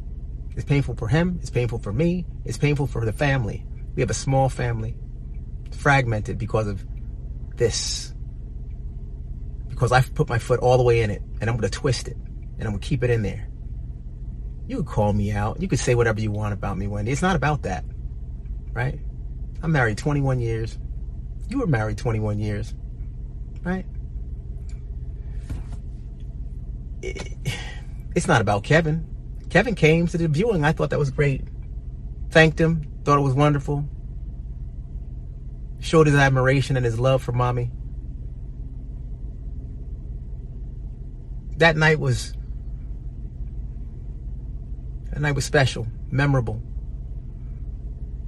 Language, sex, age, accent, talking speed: English, male, 30-49, American, 135 wpm